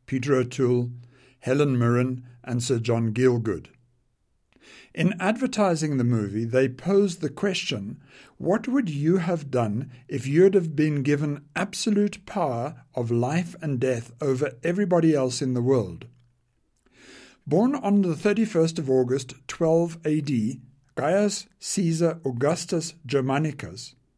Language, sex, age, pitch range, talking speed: English, male, 60-79, 130-180 Hz, 125 wpm